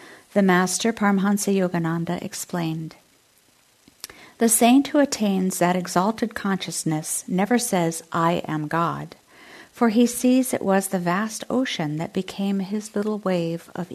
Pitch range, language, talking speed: 170-250 Hz, English, 135 wpm